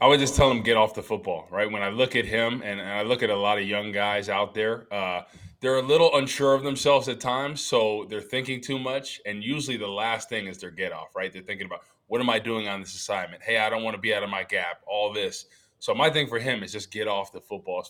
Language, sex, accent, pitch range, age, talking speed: English, male, American, 105-130 Hz, 20-39, 285 wpm